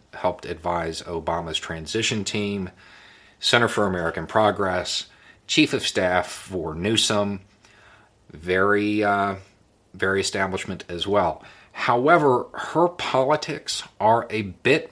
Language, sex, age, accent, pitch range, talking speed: English, male, 40-59, American, 95-110 Hz, 105 wpm